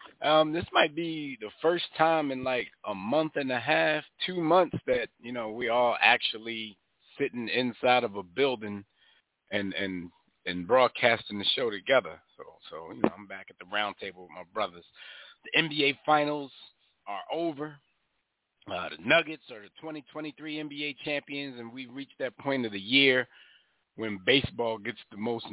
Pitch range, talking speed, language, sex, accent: 110-150 Hz, 170 wpm, English, male, American